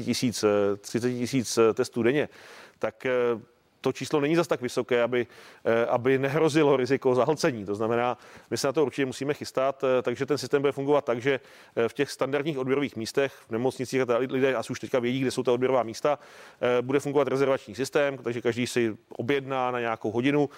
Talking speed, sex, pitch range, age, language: 180 wpm, male, 115-135 Hz, 40-59, Czech